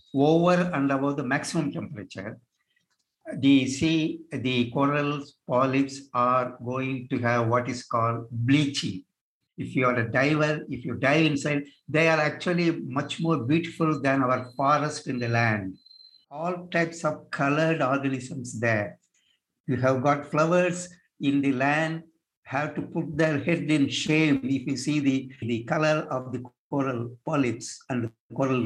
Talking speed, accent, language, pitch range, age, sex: 155 wpm, native, Telugu, 125-150 Hz, 60-79, male